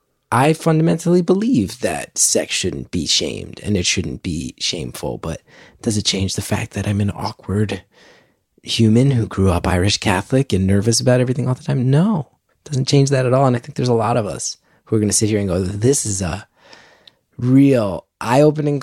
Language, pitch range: English, 110-135 Hz